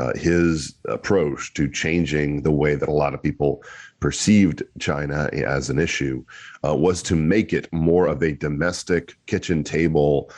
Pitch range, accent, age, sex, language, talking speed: 75-85 Hz, American, 40-59, male, English, 160 wpm